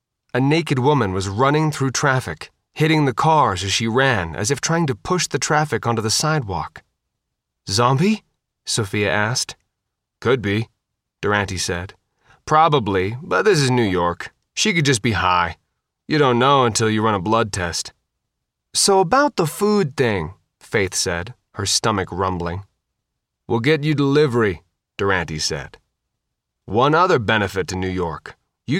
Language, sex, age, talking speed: English, male, 30-49, 150 wpm